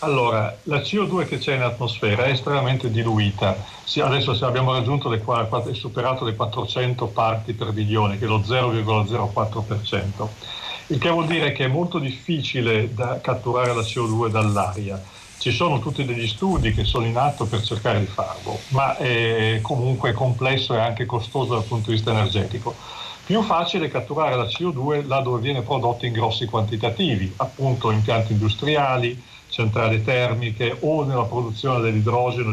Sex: male